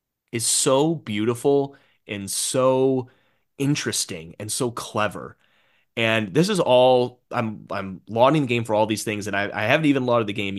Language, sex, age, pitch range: English, male, 30-49, 105-135 Hz